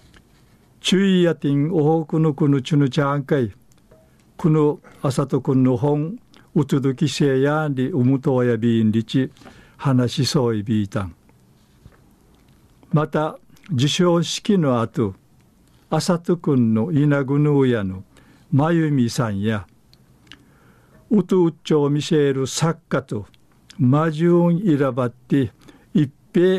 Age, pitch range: 60-79, 125-155 Hz